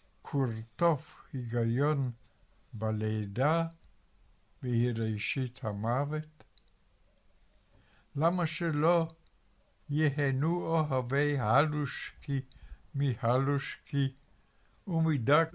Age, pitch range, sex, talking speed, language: 60-79, 115-150 Hz, male, 50 wpm, Hebrew